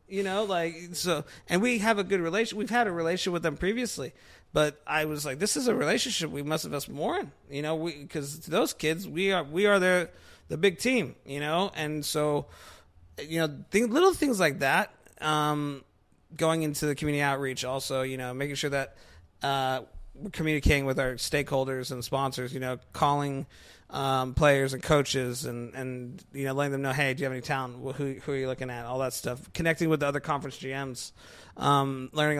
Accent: American